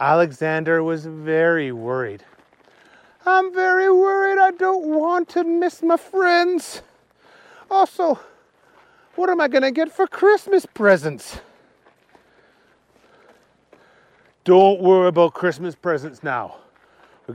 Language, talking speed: English, 105 wpm